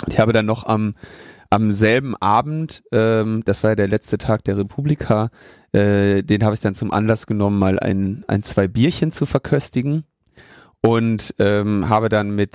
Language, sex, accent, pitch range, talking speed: German, male, German, 100-115 Hz, 175 wpm